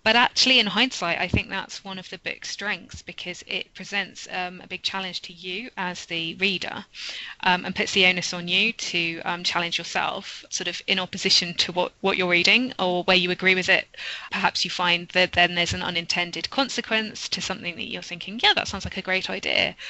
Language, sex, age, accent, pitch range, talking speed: English, female, 20-39, British, 175-215 Hz, 215 wpm